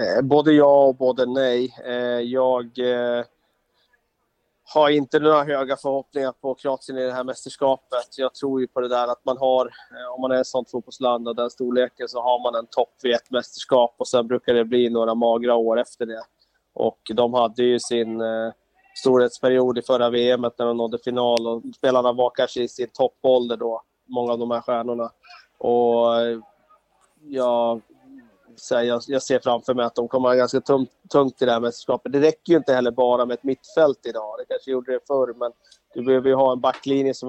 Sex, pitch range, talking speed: male, 120-135 Hz, 190 wpm